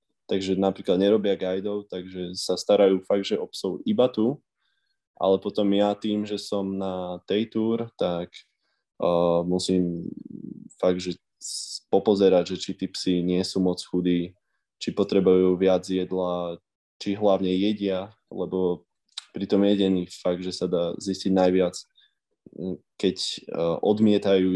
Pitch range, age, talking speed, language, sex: 90-100 Hz, 20-39, 135 wpm, Slovak, male